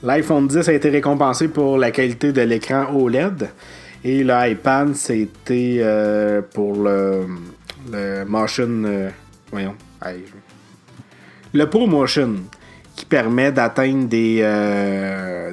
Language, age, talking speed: French, 30-49, 120 wpm